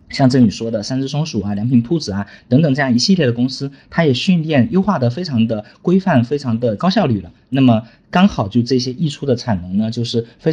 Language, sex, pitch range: Chinese, male, 115-160 Hz